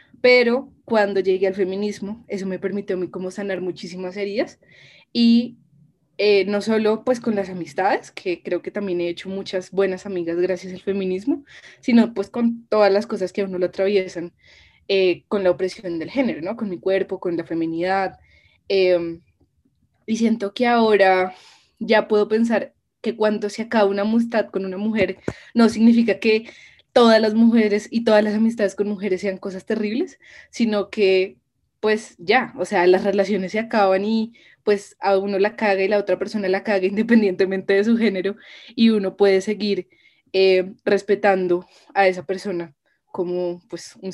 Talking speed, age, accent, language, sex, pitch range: 175 wpm, 20-39, Colombian, Spanish, female, 185-215 Hz